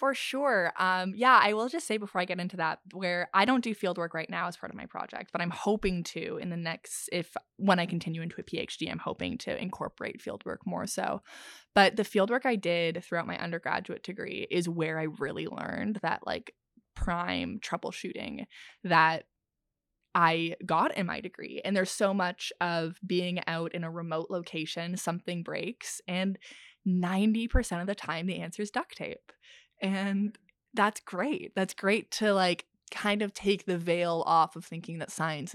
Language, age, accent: English, 20-39, American